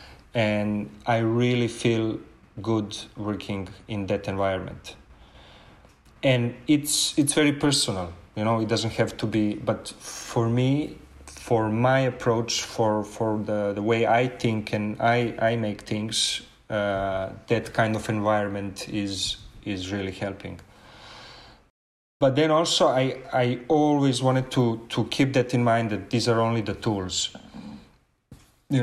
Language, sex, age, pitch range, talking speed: English, male, 30-49, 100-120 Hz, 140 wpm